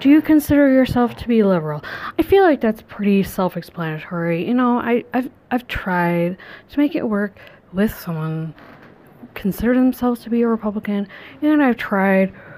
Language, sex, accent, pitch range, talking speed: English, female, American, 185-255 Hz, 160 wpm